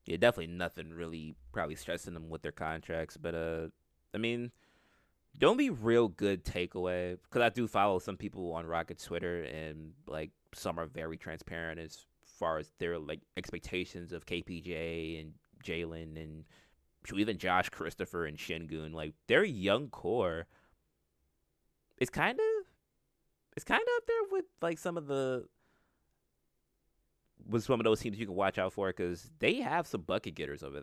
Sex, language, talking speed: male, English, 165 wpm